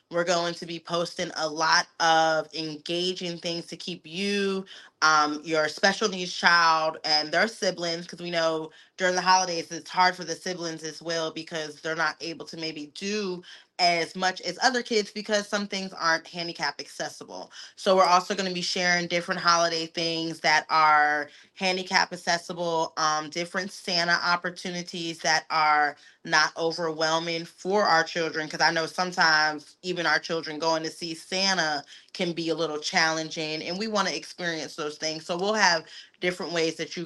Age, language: 20-39, English